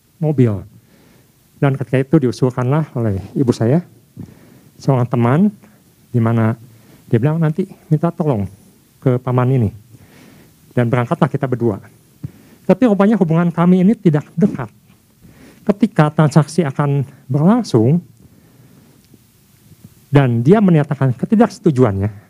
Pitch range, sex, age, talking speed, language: 125-175 Hz, male, 50-69, 105 wpm, Indonesian